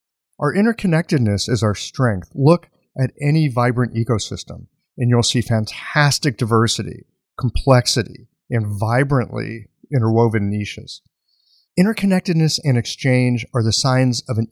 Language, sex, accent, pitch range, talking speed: English, male, American, 110-145 Hz, 115 wpm